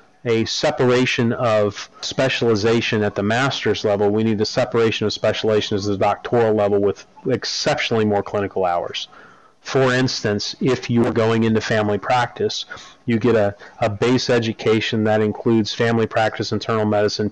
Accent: American